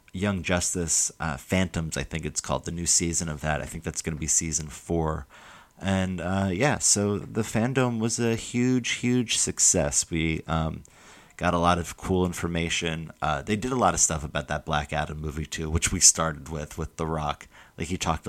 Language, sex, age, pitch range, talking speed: English, male, 30-49, 80-95 Hz, 205 wpm